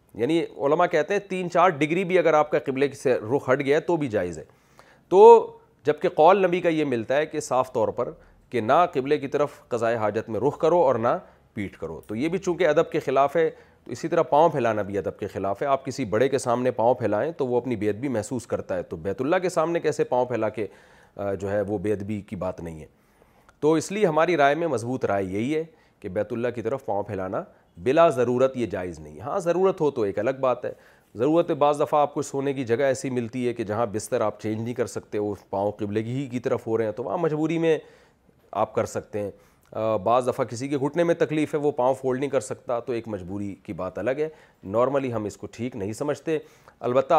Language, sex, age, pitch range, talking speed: Urdu, male, 40-59, 115-155 Hz, 245 wpm